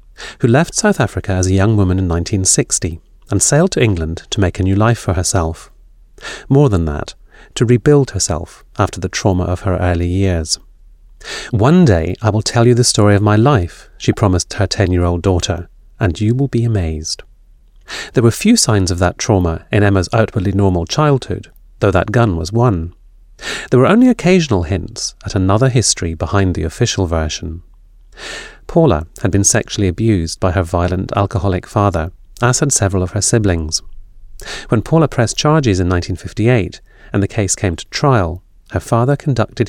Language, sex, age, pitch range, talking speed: English, male, 40-59, 90-115 Hz, 175 wpm